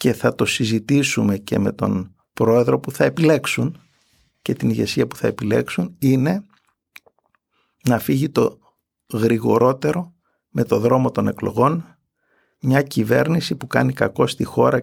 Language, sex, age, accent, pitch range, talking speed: Greek, male, 50-69, native, 120-145 Hz, 140 wpm